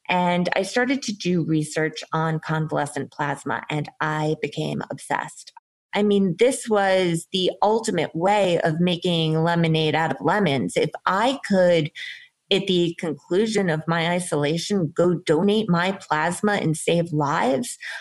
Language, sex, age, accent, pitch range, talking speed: English, female, 30-49, American, 160-200 Hz, 140 wpm